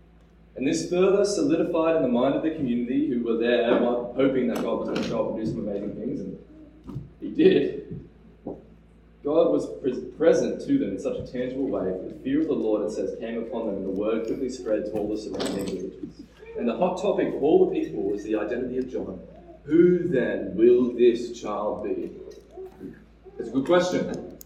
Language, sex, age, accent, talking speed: English, male, 20-39, Australian, 200 wpm